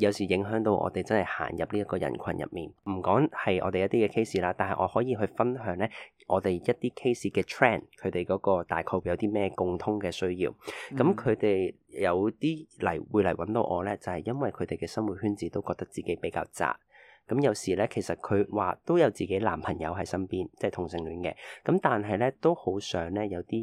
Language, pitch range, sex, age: Chinese, 90-115 Hz, male, 20-39